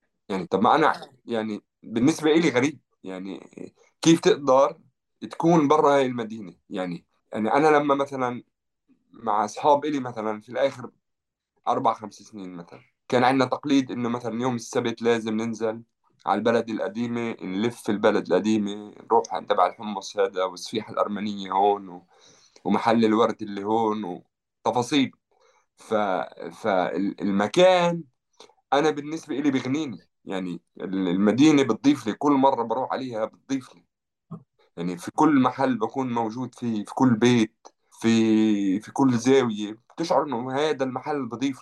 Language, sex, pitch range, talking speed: Arabic, male, 105-140 Hz, 135 wpm